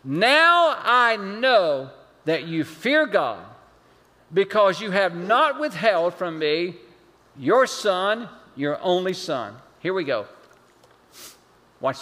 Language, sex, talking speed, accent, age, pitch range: English, male, 115 wpm, American, 50-69, 180-260 Hz